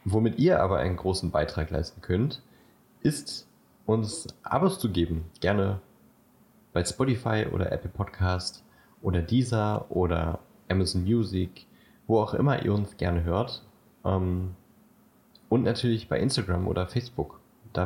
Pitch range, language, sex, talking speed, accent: 90-115 Hz, German, male, 130 wpm, German